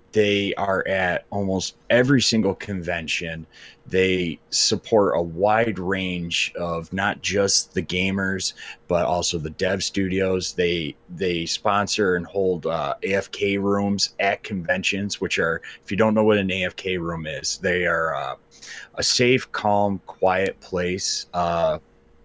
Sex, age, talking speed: male, 30-49, 140 wpm